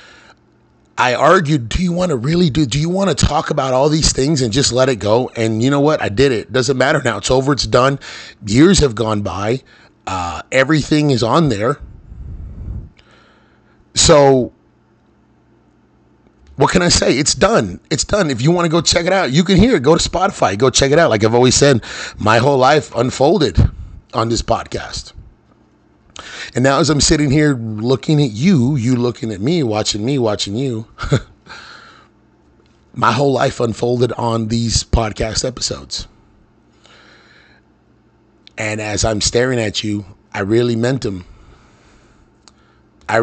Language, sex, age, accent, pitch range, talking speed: English, male, 30-49, American, 110-145 Hz, 170 wpm